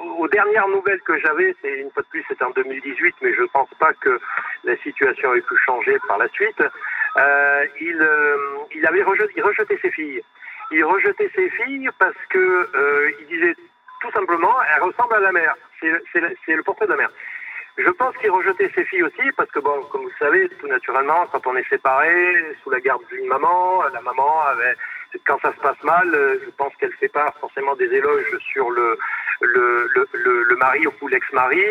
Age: 60-79